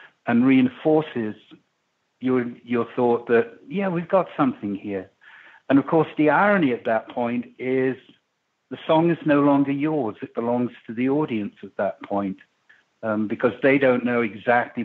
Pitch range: 115-150 Hz